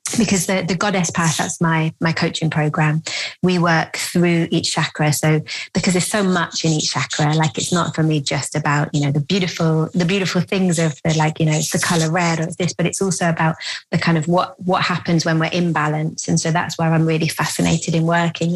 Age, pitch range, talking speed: 20-39, 160-175 Hz, 225 wpm